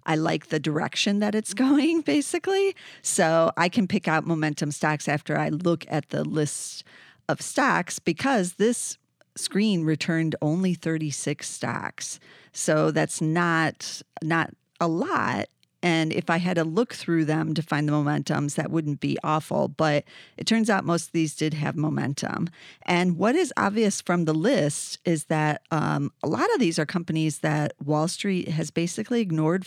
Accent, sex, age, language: American, female, 40-59, English